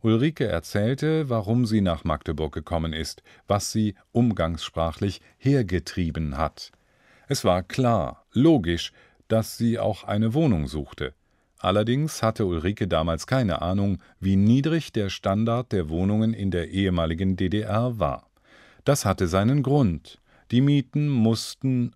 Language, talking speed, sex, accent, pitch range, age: German, 130 wpm, male, German, 90-115 Hz, 40-59